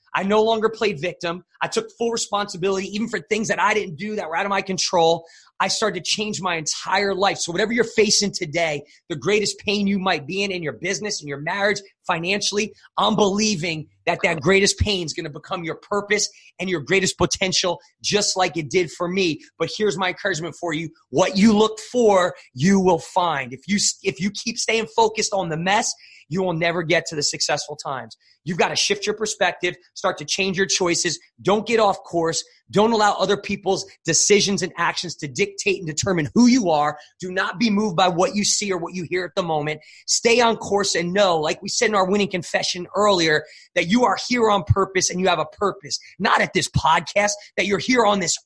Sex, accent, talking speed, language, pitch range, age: male, American, 220 wpm, English, 165-205 Hz, 30-49